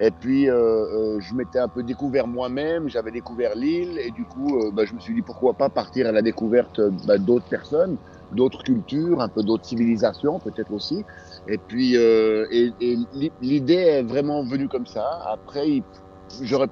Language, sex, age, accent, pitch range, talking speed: French, male, 50-69, French, 105-135 Hz, 190 wpm